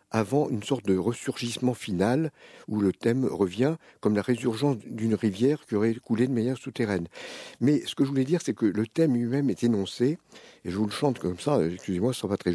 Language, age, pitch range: French, 60-79, 110-140 Hz